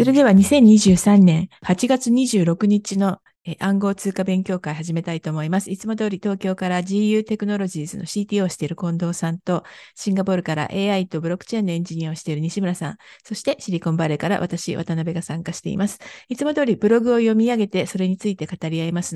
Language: Japanese